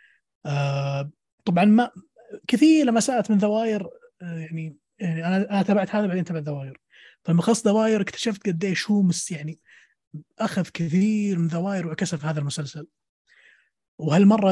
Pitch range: 150-190 Hz